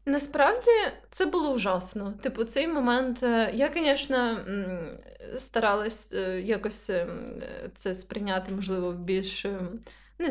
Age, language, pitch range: 20-39, Ukrainian, 190-240 Hz